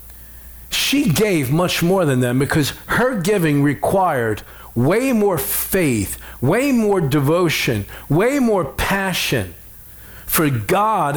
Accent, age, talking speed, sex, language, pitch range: American, 50-69, 115 wpm, male, English, 110-165 Hz